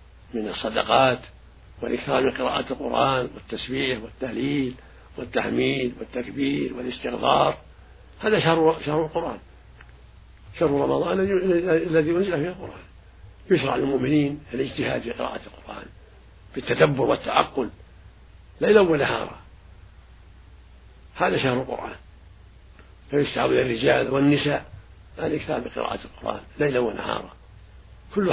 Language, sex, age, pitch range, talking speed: Arabic, male, 60-79, 95-145 Hz, 95 wpm